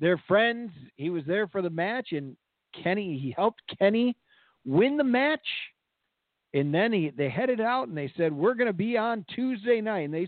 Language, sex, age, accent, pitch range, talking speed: English, male, 50-69, American, 160-205 Hz, 200 wpm